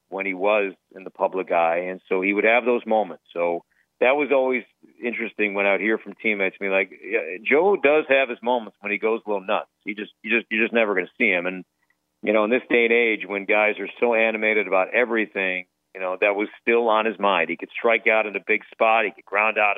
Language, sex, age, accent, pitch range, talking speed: English, male, 50-69, American, 100-115 Hz, 260 wpm